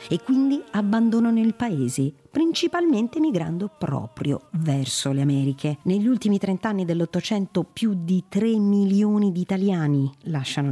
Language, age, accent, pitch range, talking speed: Italian, 50-69, native, 140-210 Hz, 125 wpm